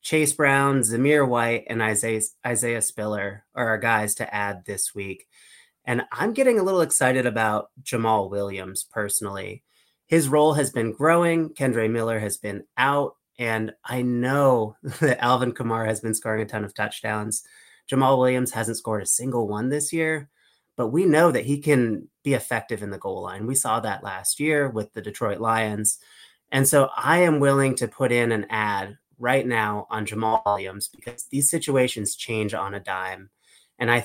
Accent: American